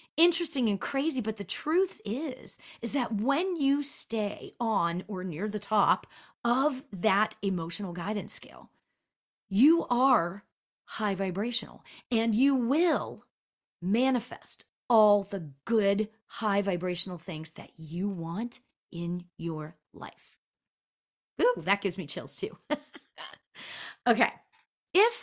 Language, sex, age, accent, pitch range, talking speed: English, female, 40-59, American, 195-270 Hz, 120 wpm